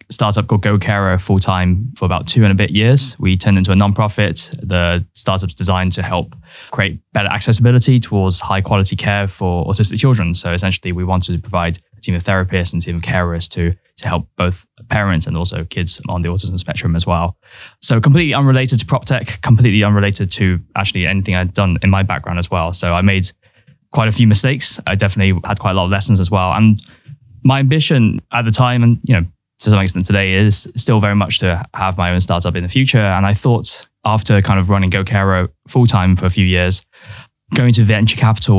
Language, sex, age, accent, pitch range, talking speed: English, male, 10-29, British, 95-115 Hz, 215 wpm